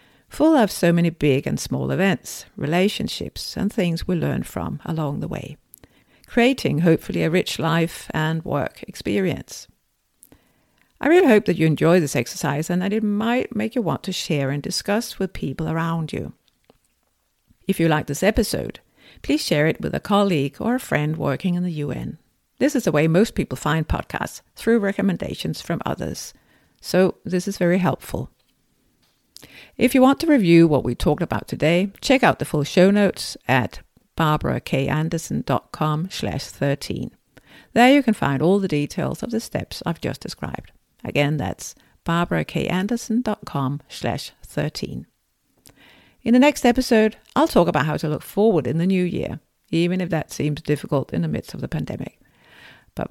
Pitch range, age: 155-215 Hz, 50-69